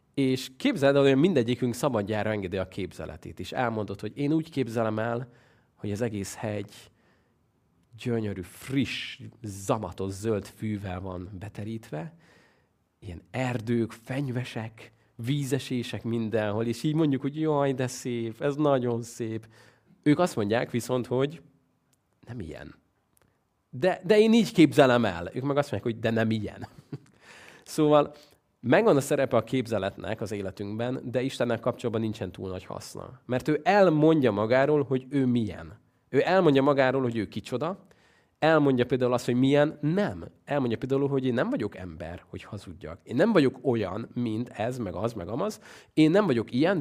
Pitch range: 110-140 Hz